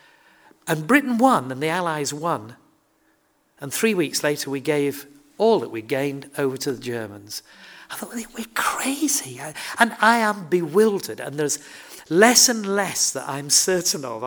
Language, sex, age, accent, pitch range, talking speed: English, male, 50-69, British, 130-185 Hz, 160 wpm